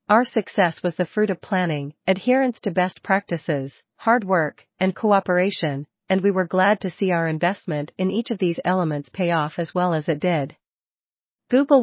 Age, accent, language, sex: 40-59, American, English, female